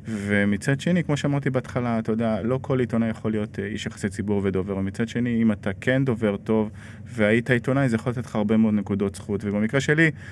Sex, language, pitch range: male, Hebrew, 105-125 Hz